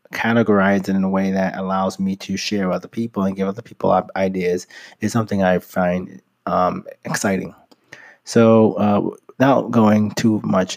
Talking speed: 165 wpm